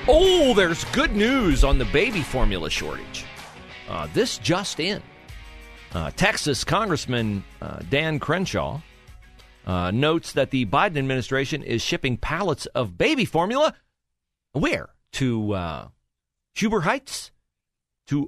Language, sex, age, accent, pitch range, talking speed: English, male, 40-59, American, 95-155 Hz, 120 wpm